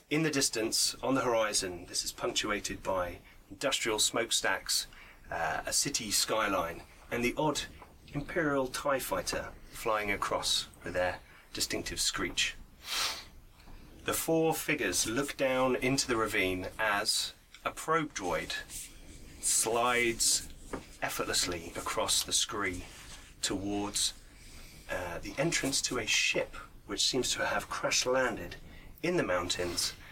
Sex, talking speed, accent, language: male, 120 wpm, British, English